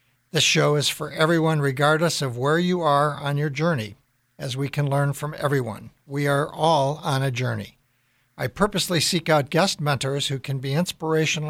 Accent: American